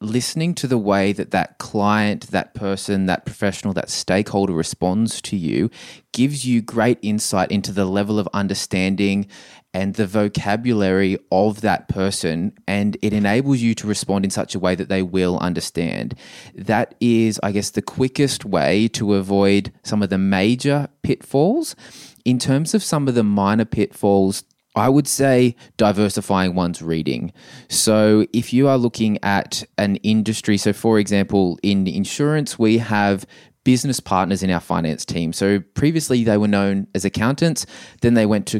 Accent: Australian